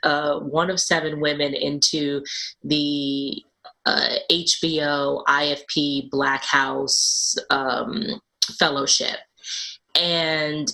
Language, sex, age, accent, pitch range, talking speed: English, female, 30-49, American, 140-160 Hz, 85 wpm